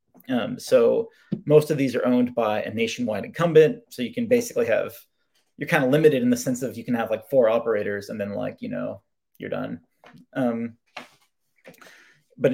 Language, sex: English, male